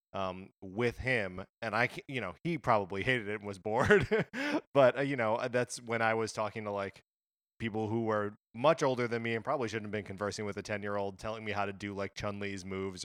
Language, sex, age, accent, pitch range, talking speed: English, male, 20-39, American, 95-115 Hz, 220 wpm